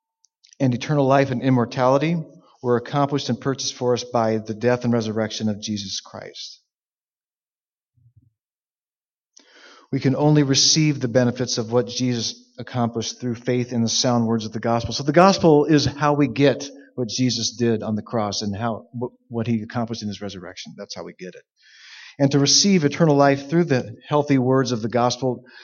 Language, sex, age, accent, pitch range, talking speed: English, male, 40-59, American, 120-145 Hz, 180 wpm